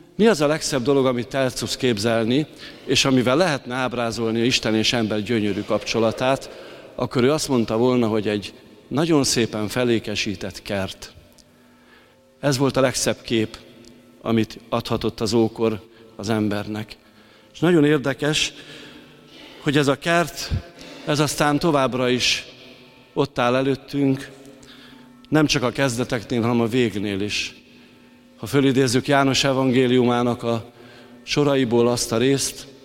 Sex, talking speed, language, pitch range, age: male, 130 wpm, Hungarian, 115-135 Hz, 50-69